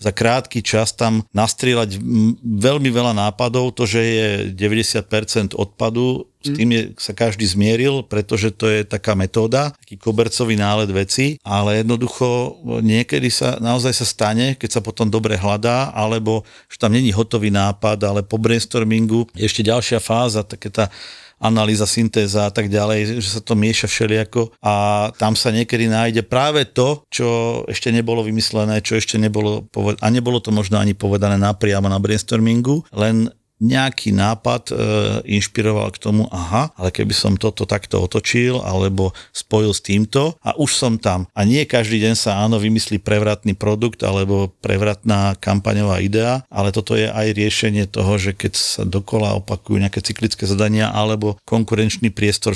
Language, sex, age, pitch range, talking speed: Slovak, male, 50-69, 105-115 Hz, 160 wpm